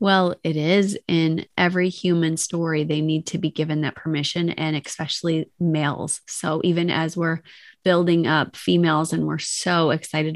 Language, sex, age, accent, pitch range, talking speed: English, female, 30-49, American, 155-175 Hz, 160 wpm